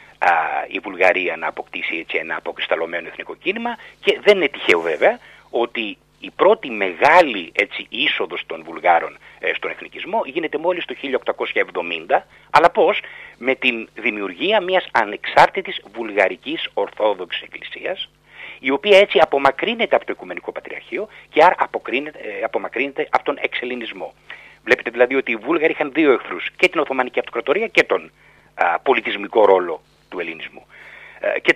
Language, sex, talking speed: Greek, male, 130 wpm